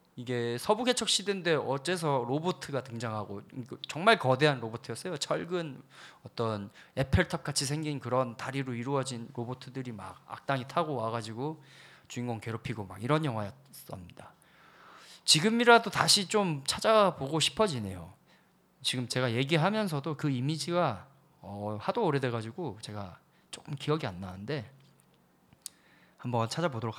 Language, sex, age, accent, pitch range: Korean, male, 20-39, native, 115-155 Hz